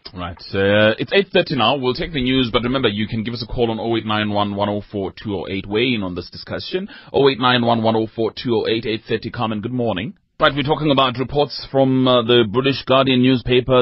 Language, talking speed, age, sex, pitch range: English, 185 wpm, 30-49, male, 90-125 Hz